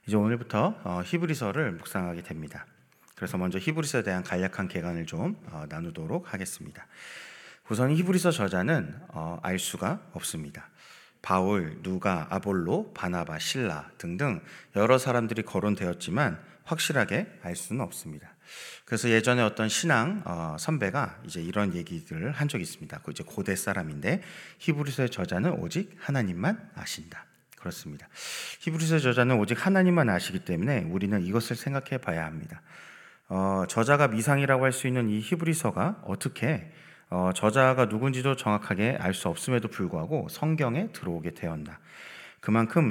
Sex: male